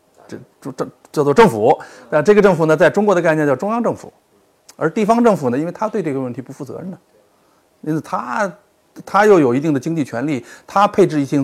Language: Chinese